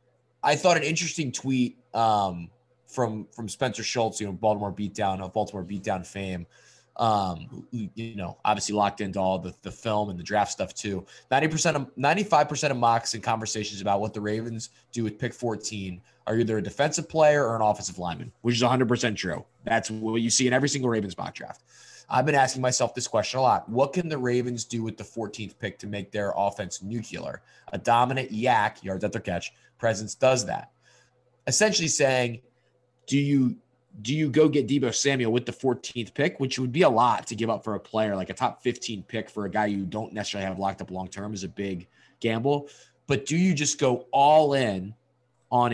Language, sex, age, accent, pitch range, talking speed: English, male, 20-39, American, 105-130 Hz, 215 wpm